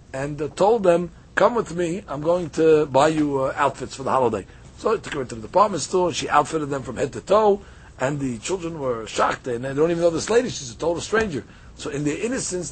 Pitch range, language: 135-175 Hz, English